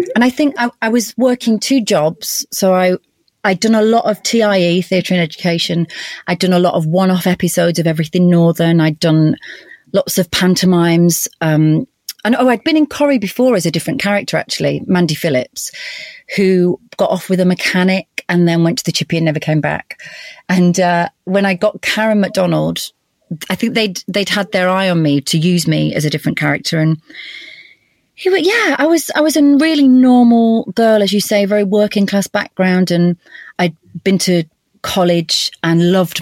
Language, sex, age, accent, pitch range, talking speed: English, female, 30-49, British, 165-215 Hz, 190 wpm